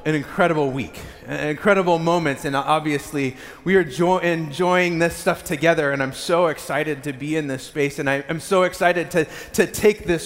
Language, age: English, 30-49